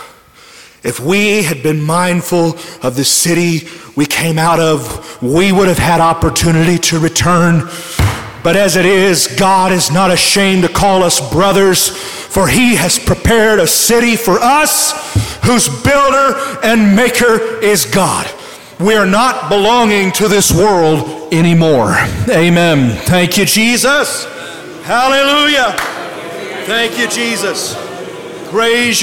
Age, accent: 40-59, American